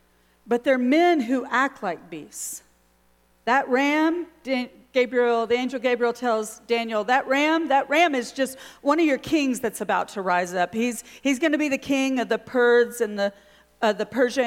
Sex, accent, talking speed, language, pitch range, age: female, American, 180 wpm, English, 175-250 Hz, 40-59